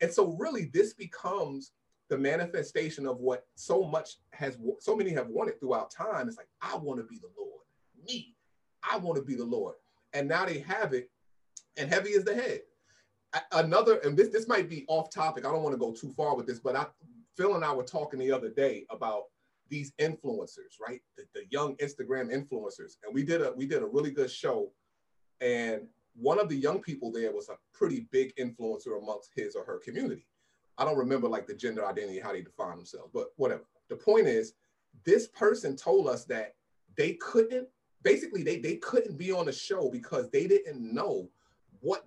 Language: English